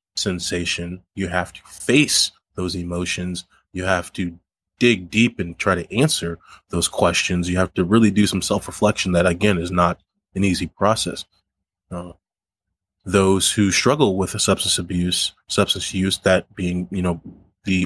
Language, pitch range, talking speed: English, 90-100 Hz, 160 wpm